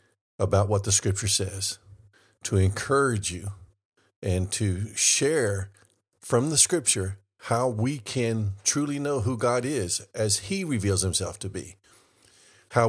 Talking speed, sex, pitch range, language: 135 wpm, male, 95-120 Hz, English